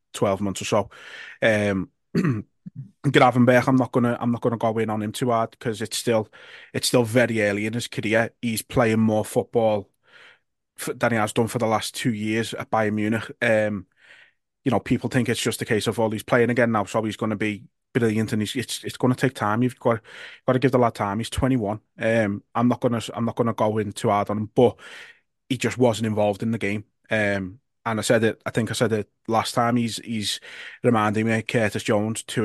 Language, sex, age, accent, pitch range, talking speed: English, male, 20-39, British, 105-120 Hz, 235 wpm